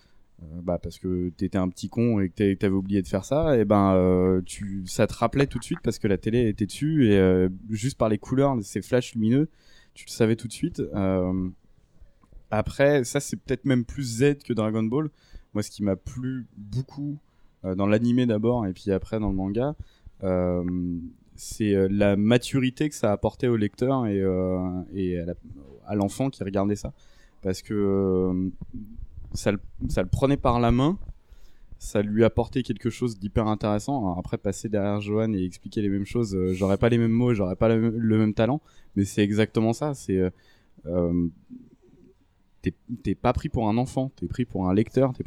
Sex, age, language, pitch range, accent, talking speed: male, 20-39, French, 95-120 Hz, French, 200 wpm